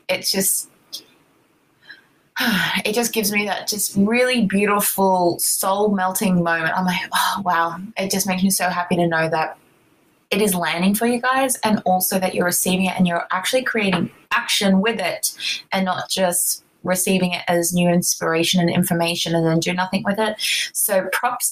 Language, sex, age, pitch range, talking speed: English, female, 20-39, 170-205 Hz, 175 wpm